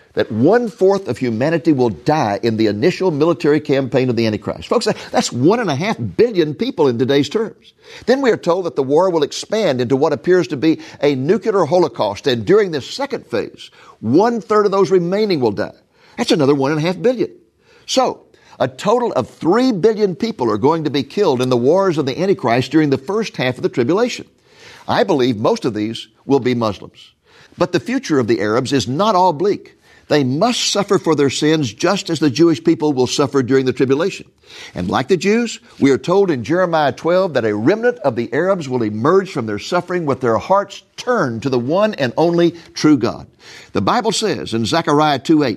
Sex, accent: male, American